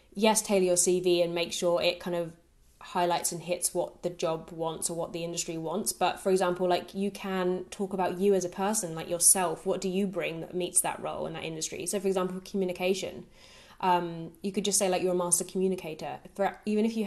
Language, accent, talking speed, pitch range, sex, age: English, British, 225 wpm, 175-190 Hz, female, 20-39